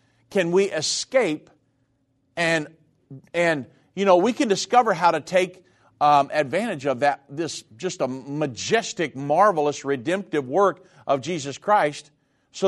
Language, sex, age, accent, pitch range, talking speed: English, male, 50-69, American, 140-185 Hz, 135 wpm